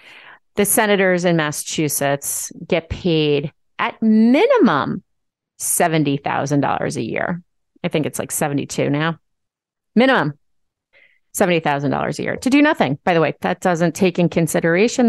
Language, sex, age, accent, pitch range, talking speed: English, female, 30-49, American, 155-215 Hz, 125 wpm